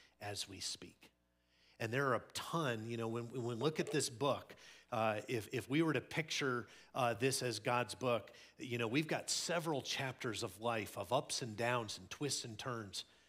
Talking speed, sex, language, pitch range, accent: 205 wpm, male, English, 100-145 Hz, American